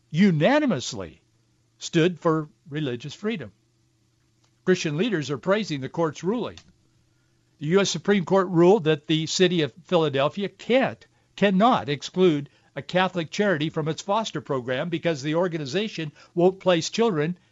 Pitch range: 140-190 Hz